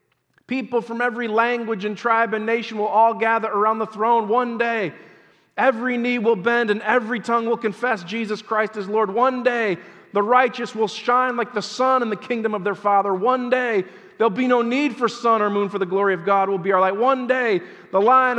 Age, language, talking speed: 40-59, English, 220 wpm